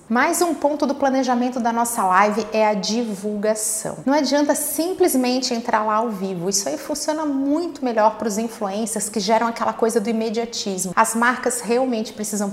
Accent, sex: Brazilian, female